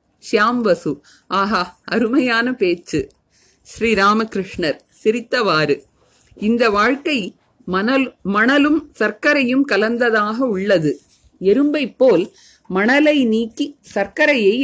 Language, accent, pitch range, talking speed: Tamil, native, 195-255 Hz, 75 wpm